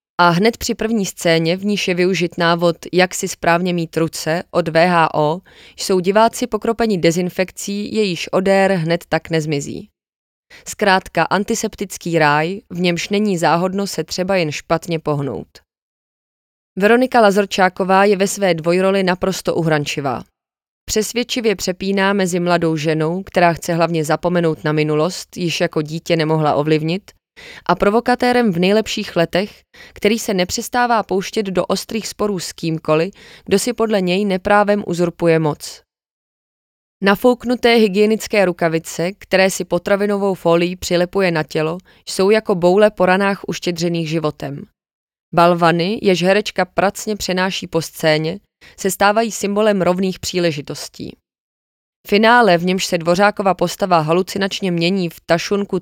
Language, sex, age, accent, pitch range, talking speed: Czech, female, 20-39, native, 170-205 Hz, 130 wpm